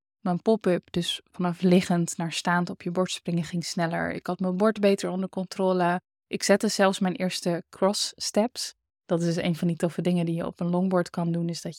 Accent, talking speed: Dutch, 225 wpm